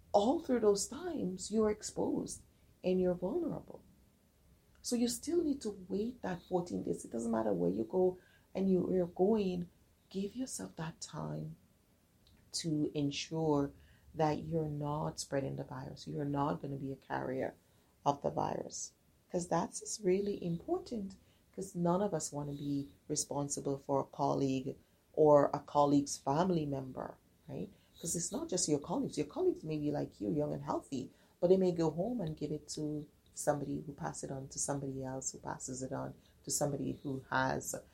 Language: English